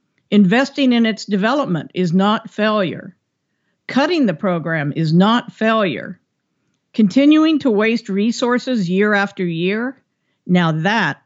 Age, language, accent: 50-69, English, American